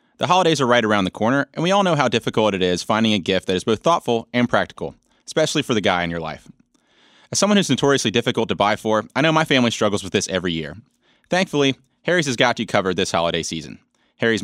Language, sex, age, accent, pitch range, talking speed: English, male, 30-49, American, 105-155 Hz, 240 wpm